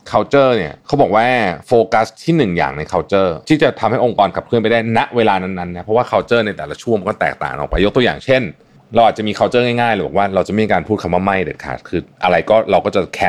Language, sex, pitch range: Thai, male, 90-115 Hz